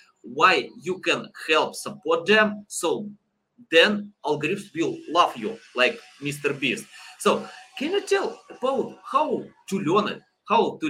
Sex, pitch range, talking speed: male, 160-220 Hz, 145 wpm